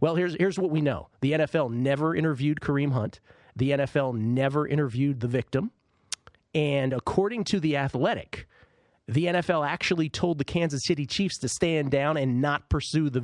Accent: American